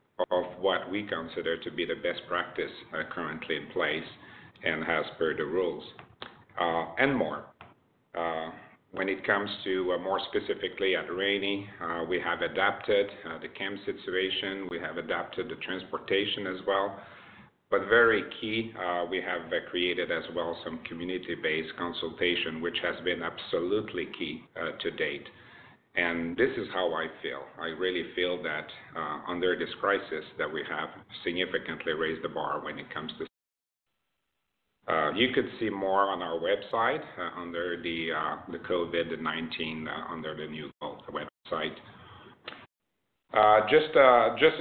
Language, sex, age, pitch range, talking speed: English, male, 50-69, 85-110 Hz, 155 wpm